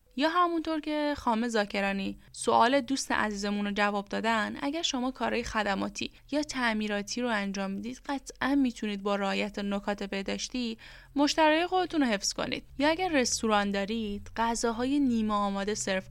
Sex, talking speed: female, 145 wpm